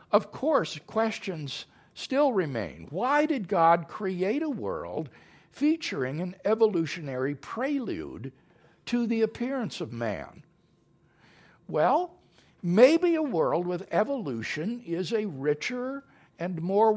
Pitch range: 165-240 Hz